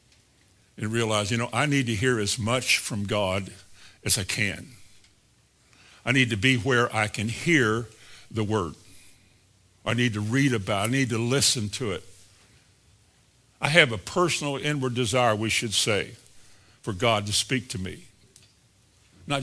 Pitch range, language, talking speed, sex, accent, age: 105-135 Hz, English, 165 wpm, male, American, 60-79